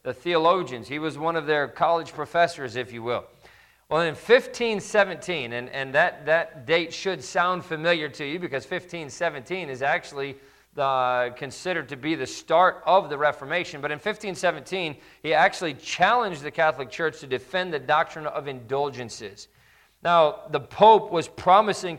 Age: 40-59